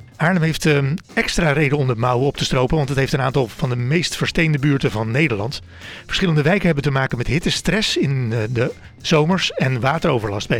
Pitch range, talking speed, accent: 125-165 Hz, 200 wpm, Dutch